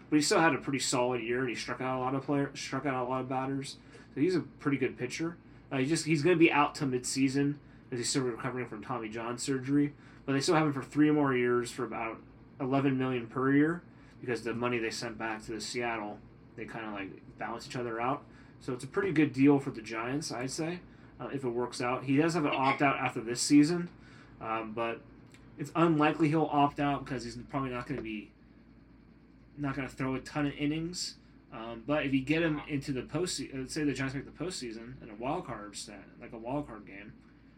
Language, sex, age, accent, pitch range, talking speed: English, male, 20-39, American, 120-145 Hz, 240 wpm